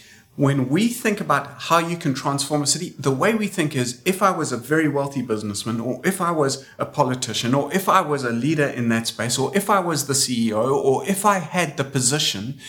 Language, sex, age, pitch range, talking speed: English, male, 40-59, 110-150 Hz, 230 wpm